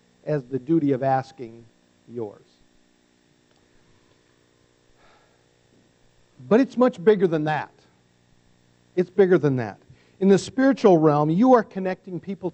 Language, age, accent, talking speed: English, 50-69, American, 115 wpm